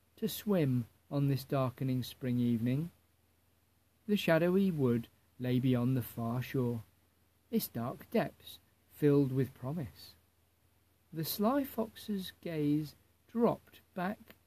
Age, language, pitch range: 50-69, English, 100-155 Hz